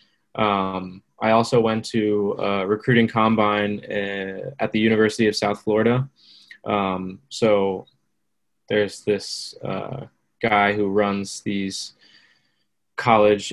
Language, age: English, 10-29